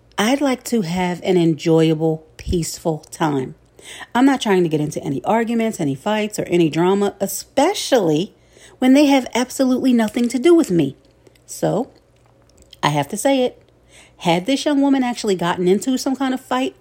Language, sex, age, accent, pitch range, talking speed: English, female, 40-59, American, 165-240 Hz, 170 wpm